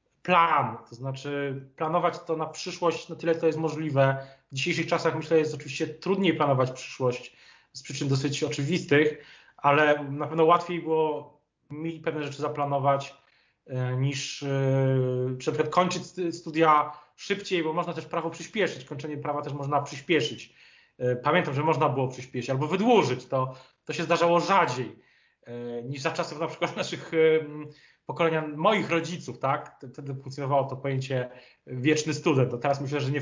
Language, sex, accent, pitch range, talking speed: Polish, male, native, 140-170 Hz, 150 wpm